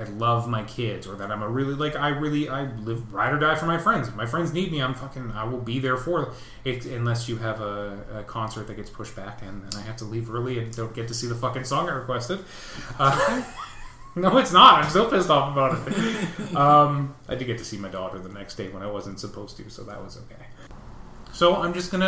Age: 30-49